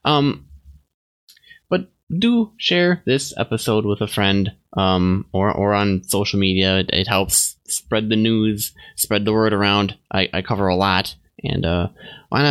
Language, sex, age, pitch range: English, male, 20-39, 90-130 Hz